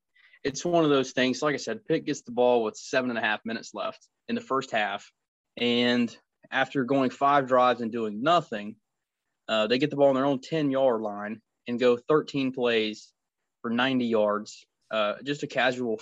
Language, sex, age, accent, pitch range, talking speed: English, male, 20-39, American, 110-135 Hz, 200 wpm